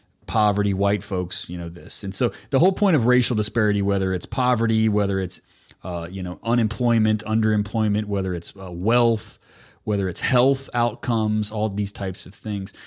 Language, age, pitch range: English, 30-49, 100-125 Hz